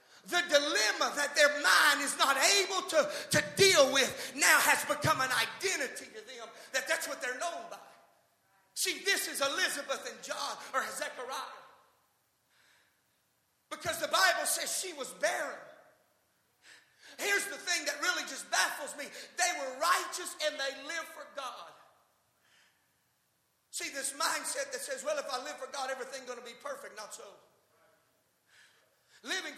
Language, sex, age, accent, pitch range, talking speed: English, male, 50-69, American, 275-345 Hz, 150 wpm